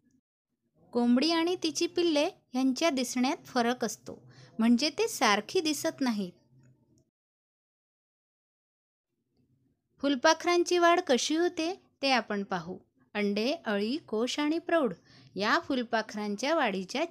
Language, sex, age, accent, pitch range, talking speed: Marathi, female, 20-39, native, 205-315 Hz, 100 wpm